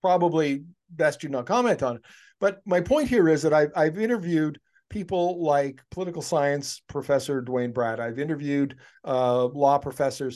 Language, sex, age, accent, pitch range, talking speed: English, male, 50-69, American, 135-175 Hz, 160 wpm